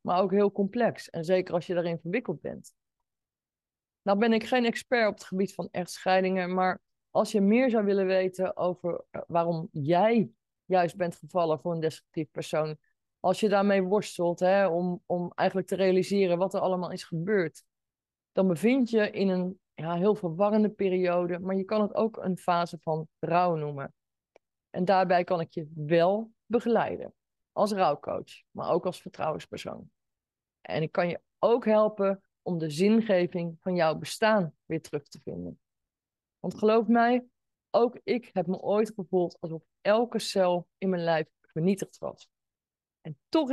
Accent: Dutch